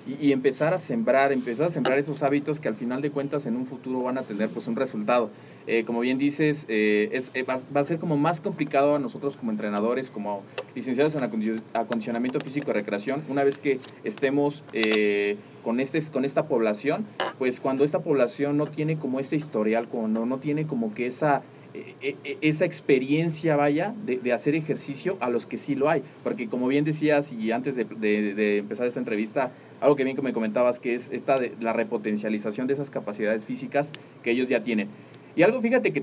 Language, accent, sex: Spanish, Mexican, male